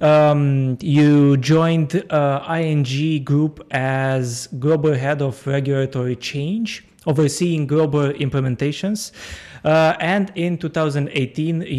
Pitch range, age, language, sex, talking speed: 135-165 Hz, 20-39, English, male, 90 wpm